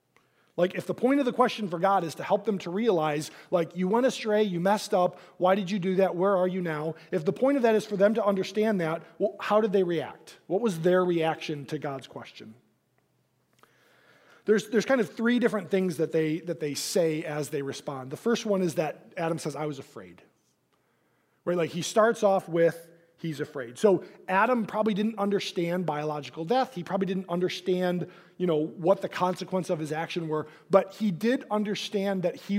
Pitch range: 150-200 Hz